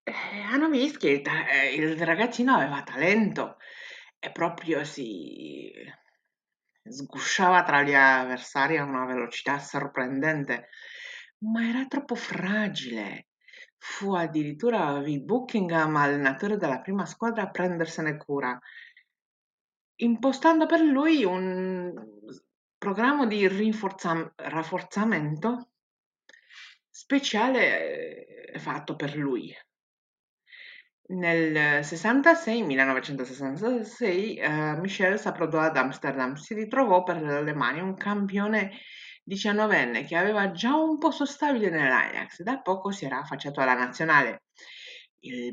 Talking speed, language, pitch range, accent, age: 105 wpm, Italian, 145-235 Hz, native, 50-69